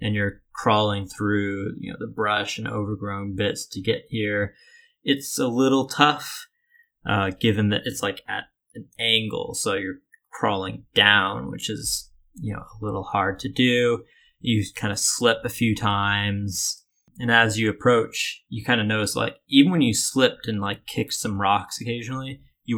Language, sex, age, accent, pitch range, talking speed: English, male, 20-39, American, 100-120 Hz, 175 wpm